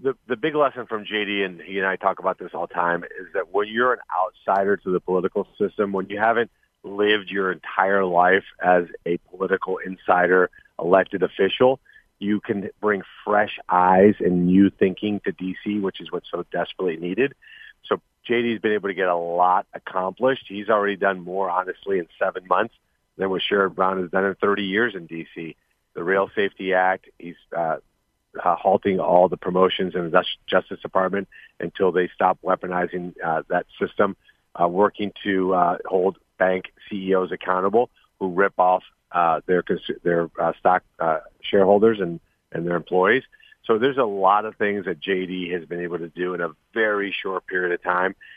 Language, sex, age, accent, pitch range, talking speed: English, male, 40-59, American, 90-105 Hz, 185 wpm